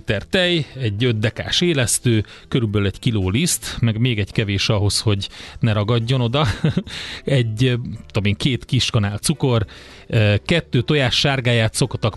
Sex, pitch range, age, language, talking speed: male, 110-130 Hz, 30-49, Hungarian, 135 wpm